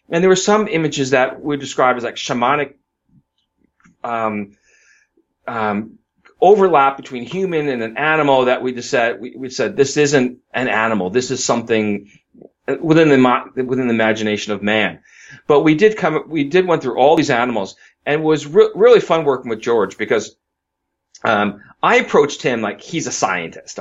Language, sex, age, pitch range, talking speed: English, male, 30-49, 115-150 Hz, 175 wpm